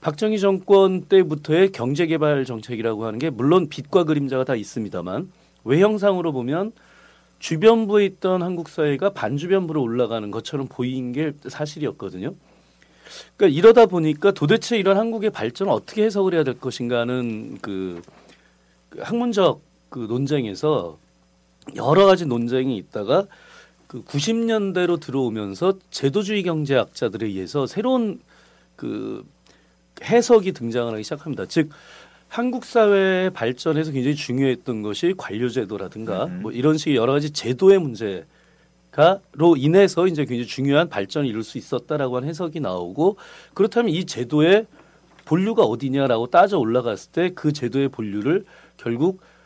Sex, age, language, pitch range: male, 40-59, Korean, 125-195 Hz